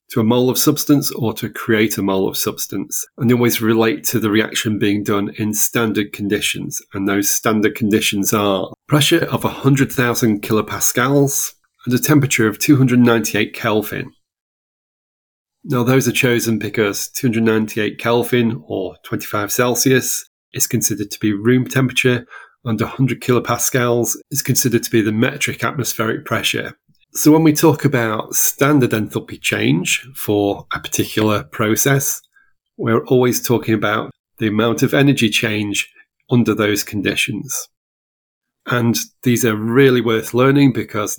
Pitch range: 105-125 Hz